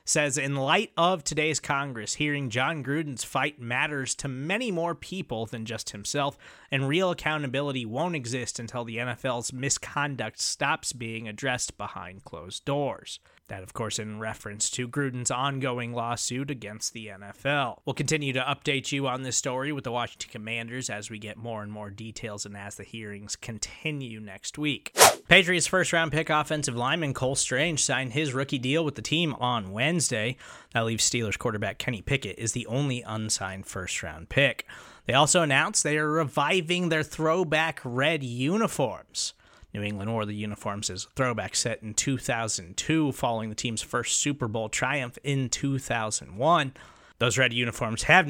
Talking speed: 165 wpm